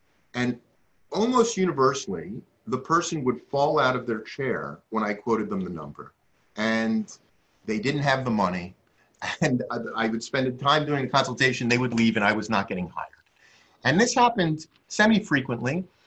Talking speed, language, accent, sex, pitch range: 170 wpm, English, American, male, 115-155 Hz